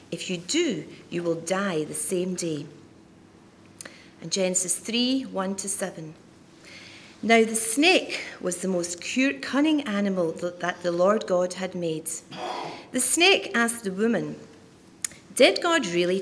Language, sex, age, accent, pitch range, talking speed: English, female, 40-59, British, 175-245 Hz, 135 wpm